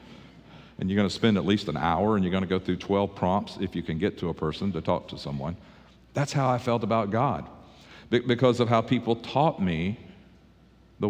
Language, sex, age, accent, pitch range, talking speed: English, male, 50-69, American, 95-115 Hz, 220 wpm